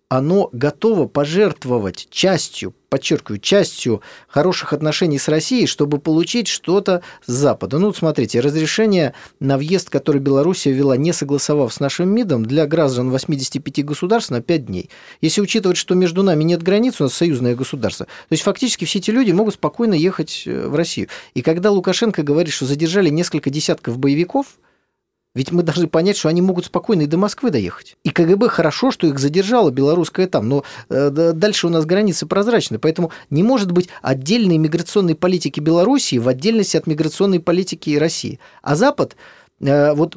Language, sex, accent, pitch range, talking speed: Russian, male, native, 145-195 Hz, 165 wpm